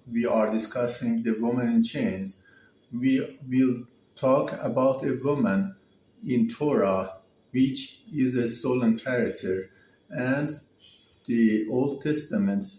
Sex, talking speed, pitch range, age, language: male, 115 wpm, 115-150 Hz, 60-79, English